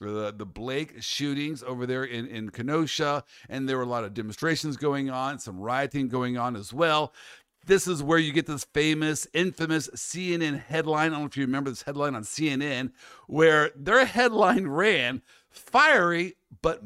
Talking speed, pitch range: 180 wpm, 130-190 Hz